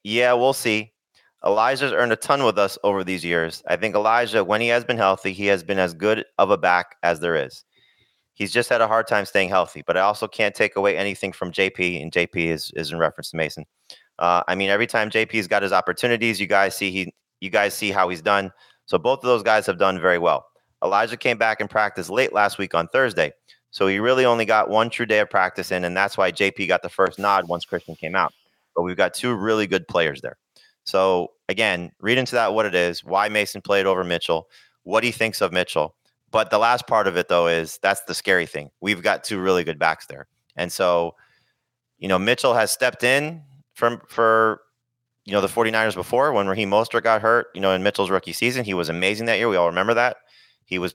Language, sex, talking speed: English, male, 230 wpm